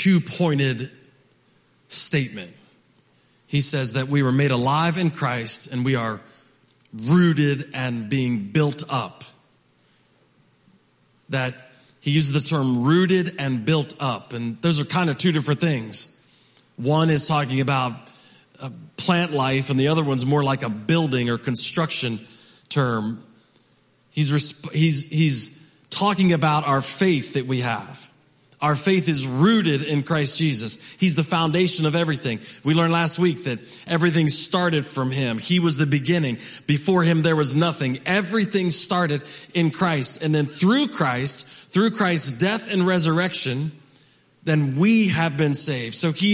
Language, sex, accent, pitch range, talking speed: English, male, American, 135-170 Hz, 145 wpm